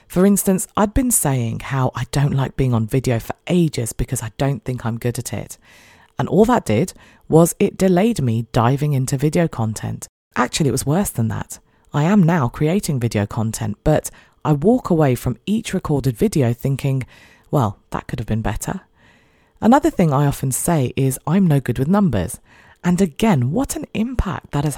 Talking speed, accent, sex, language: 190 wpm, British, female, English